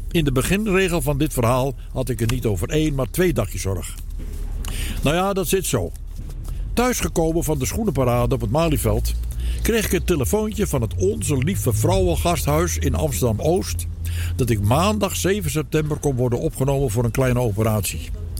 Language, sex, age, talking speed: Dutch, male, 60-79, 170 wpm